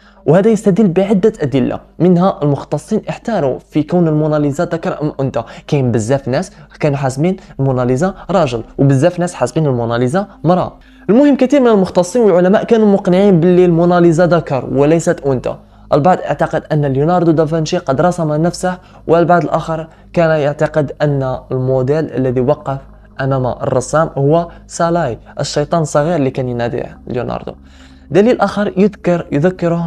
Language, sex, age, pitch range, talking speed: Arabic, male, 20-39, 135-175 Hz, 135 wpm